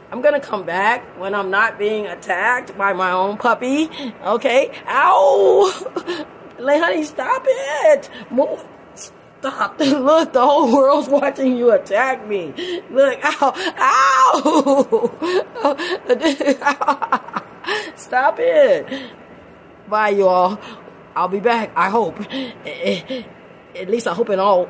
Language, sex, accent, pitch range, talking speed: English, female, American, 230-305 Hz, 110 wpm